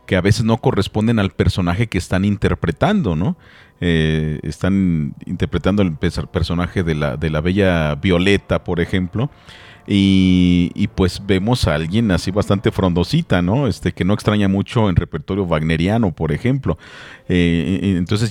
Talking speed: 150 wpm